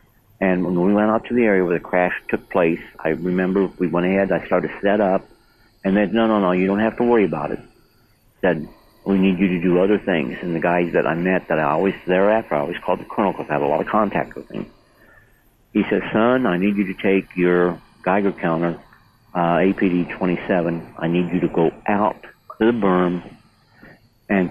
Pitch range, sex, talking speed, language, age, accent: 90-110 Hz, male, 225 wpm, English, 60-79, American